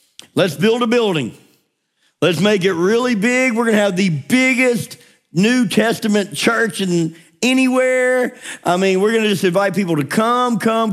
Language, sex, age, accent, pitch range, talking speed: English, male, 50-69, American, 145-215 Hz, 170 wpm